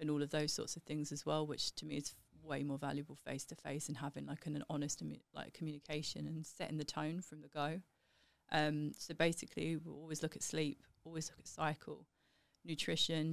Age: 30-49